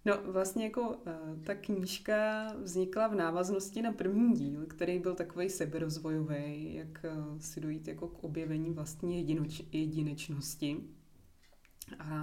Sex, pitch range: female, 155-170 Hz